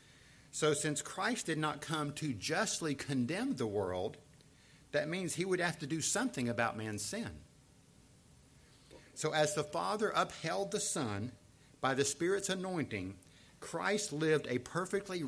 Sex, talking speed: male, 145 wpm